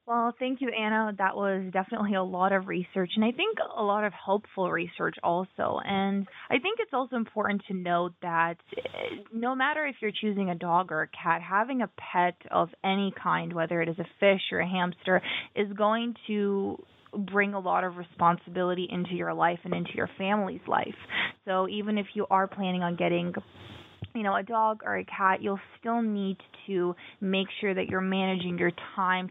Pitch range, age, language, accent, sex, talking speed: 185-210 Hz, 20-39, English, American, female, 195 wpm